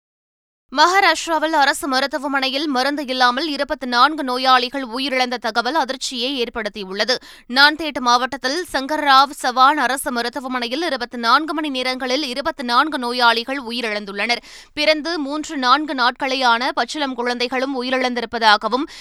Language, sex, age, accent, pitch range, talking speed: Tamil, female, 20-39, native, 245-290 Hz, 100 wpm